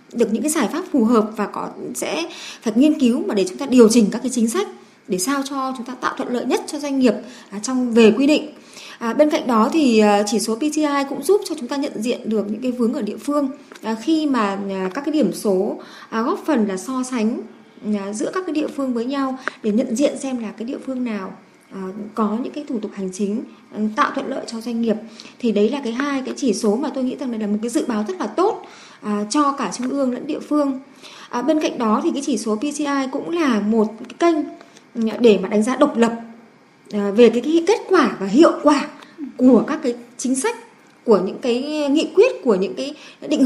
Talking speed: 235 wpm